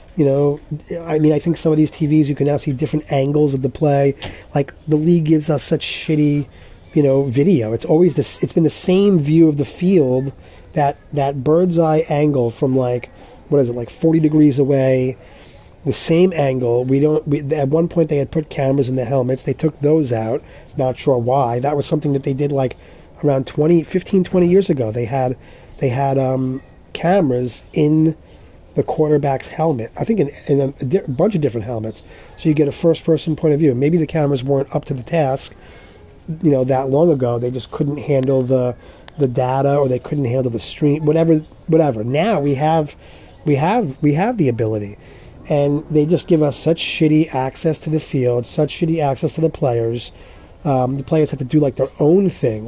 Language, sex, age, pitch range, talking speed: English, male, 30-49, 130-155 Hz, 210 wpm